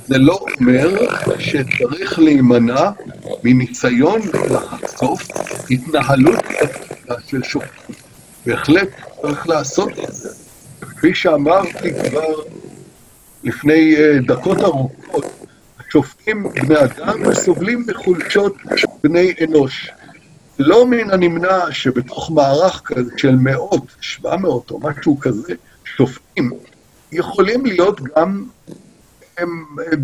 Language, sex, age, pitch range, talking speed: Hebrew, male, 60-79, 130-180 Hz, 90 wpm